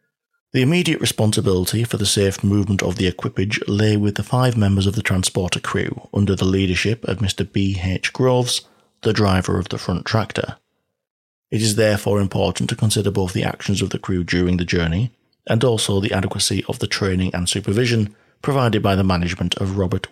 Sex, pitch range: male, 95-110 Hz